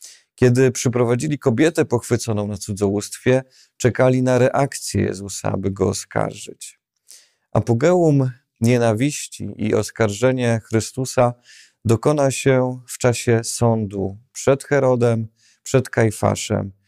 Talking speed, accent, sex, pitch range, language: 95 wpm, native, male, 105-130 Hz, Polish